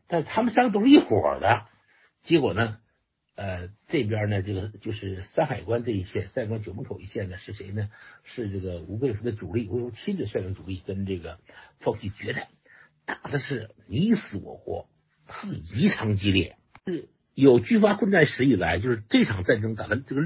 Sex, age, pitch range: male, 60-79, 100-135 Hz